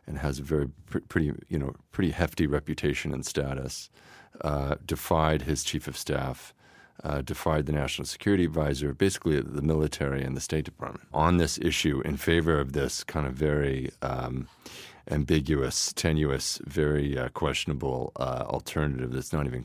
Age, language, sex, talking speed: 40-59, English, male, 160 wpm